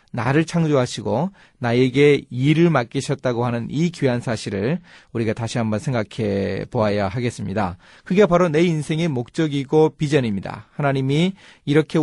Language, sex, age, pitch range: Korean, male, 30-49, 110-160 Hz